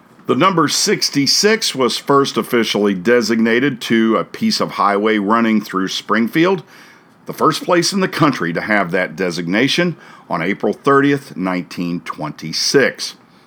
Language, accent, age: English, American, 50-69